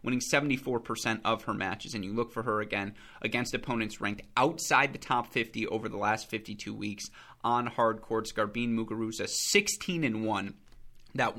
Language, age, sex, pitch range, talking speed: English, 30-49, male, 110-135 Hz, 165 wpm